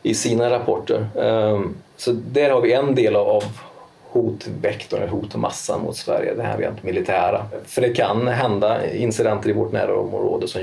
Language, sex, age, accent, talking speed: English, male, 30-49, Swedish, 170 wpm